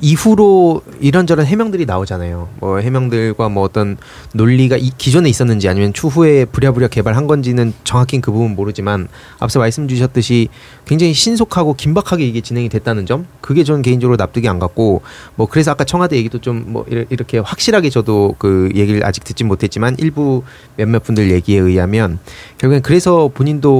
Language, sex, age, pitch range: Korean, male, 30-49, 110-170 Hz